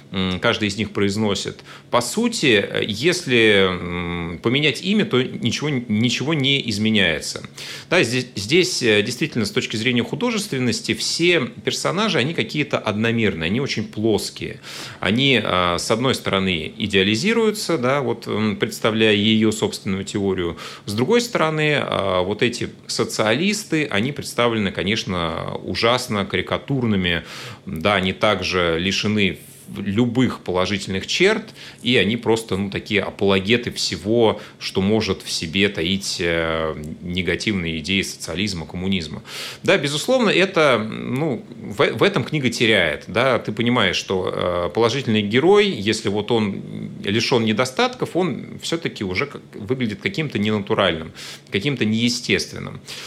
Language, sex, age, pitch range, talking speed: Russian, male, 30-49, 95-130 Hz, 110 wpm